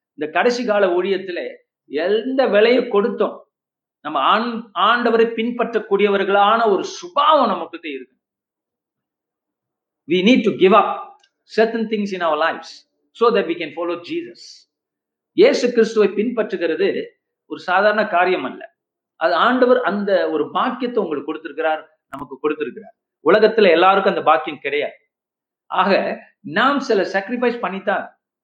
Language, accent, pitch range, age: Tamil, native, 180-245 Hz, 50-69